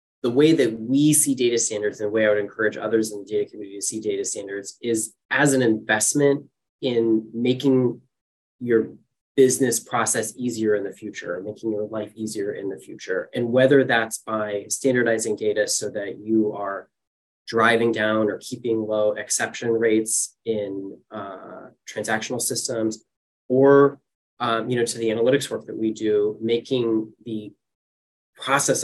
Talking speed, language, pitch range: 160 wpm, English, 110-140 Hz